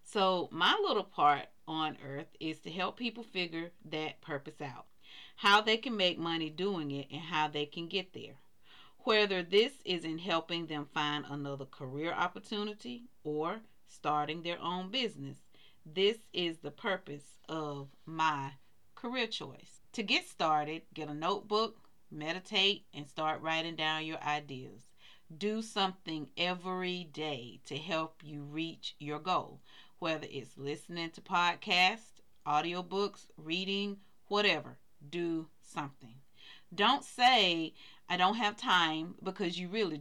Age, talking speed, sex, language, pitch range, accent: 40-59, 140 wpm, female, English, 150-195 Hz, American